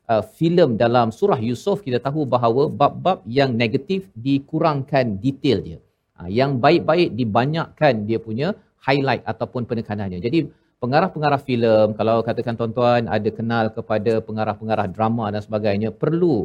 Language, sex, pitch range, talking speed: Malayalam, male, 115-155 Hz, 140 wpm